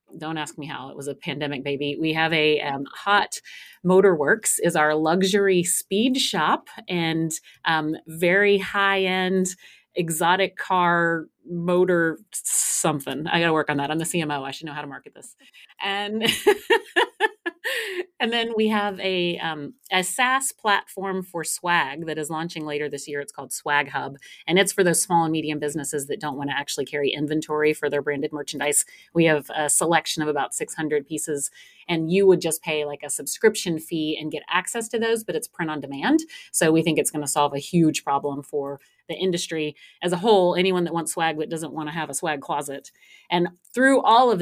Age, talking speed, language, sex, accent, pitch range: 30-49, 195 wpm, English, female, American, 150-190 Hz